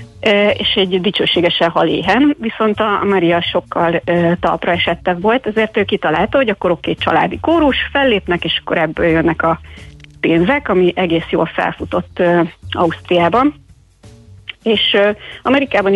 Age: 30-49